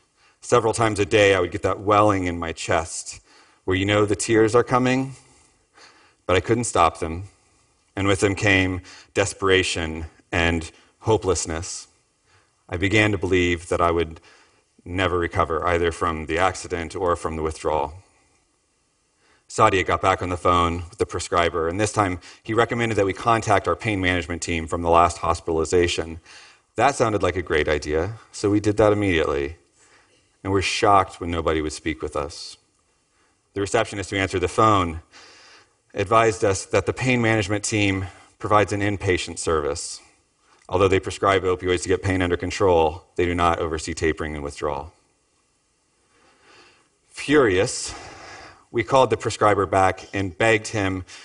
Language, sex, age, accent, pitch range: Chinese, male, 40-59, American, 85-105 Hz